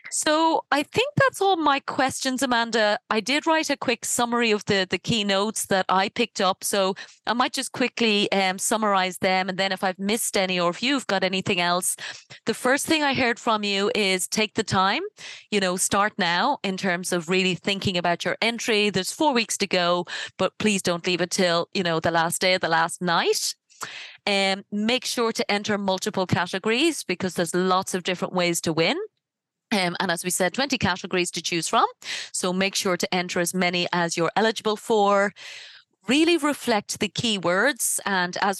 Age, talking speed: 30-49, 200 wpm